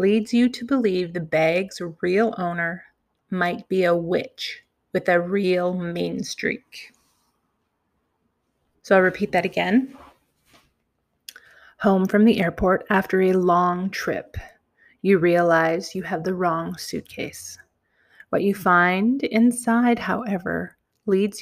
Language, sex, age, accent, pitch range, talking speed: English, female, 30-49, American, 175-210 Hz, 120 wpm